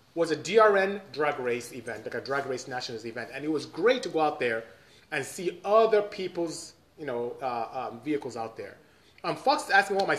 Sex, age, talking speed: male, 30-49, 220 wpm